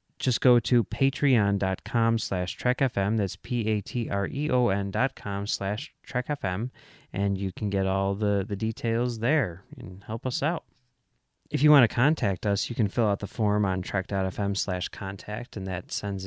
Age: 30-49